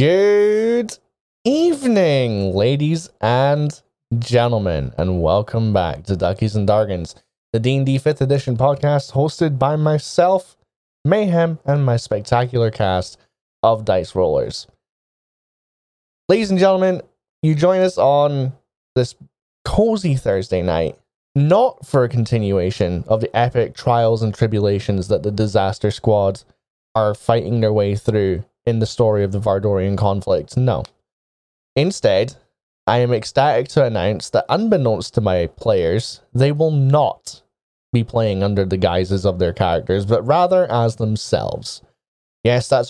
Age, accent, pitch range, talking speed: 20-39, American, 105-145 Hz, 130 wpm